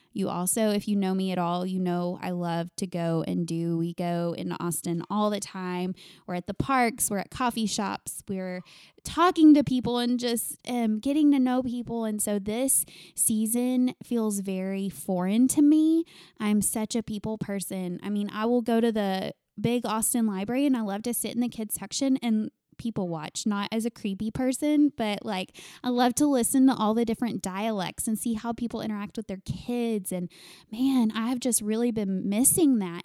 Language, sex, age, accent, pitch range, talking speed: English, female, 20-39, American, 195-245 Hz, 200 wpm